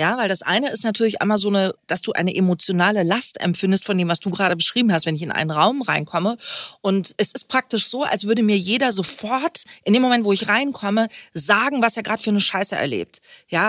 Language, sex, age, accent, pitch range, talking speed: German, female, 30-49, German, 185-230 Hz, 230 wpm